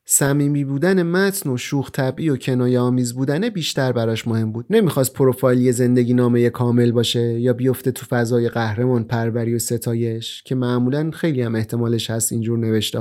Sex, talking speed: male, 175 wpm